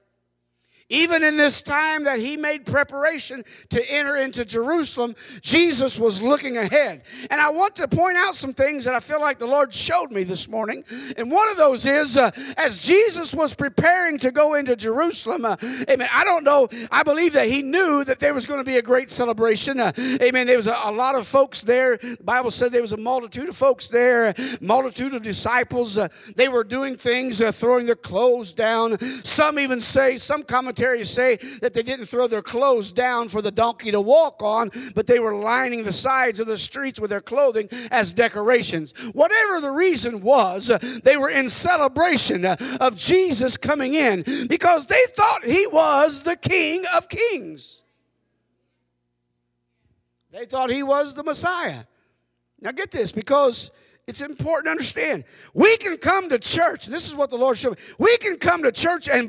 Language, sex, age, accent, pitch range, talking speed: English, male, 50-69, American, 230-295 Hz, 190 wpm